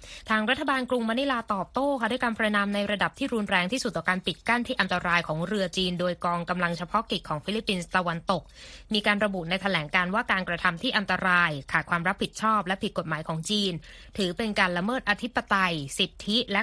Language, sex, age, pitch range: Thai, female, 20-39, 175-220 Hz